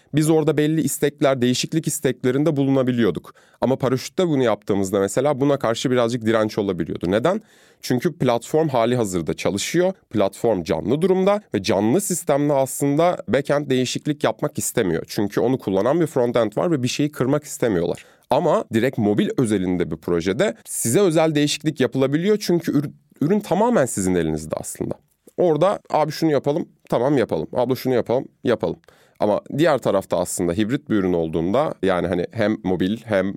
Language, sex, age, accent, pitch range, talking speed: Turkish, male, 30-49, native, 100-145 Hz, 150 wpm